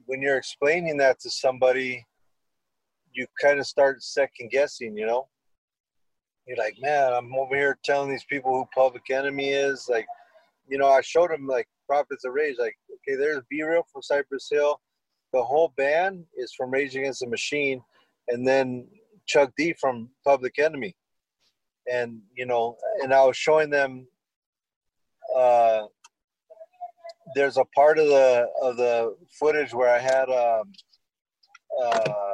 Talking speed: 155 wpm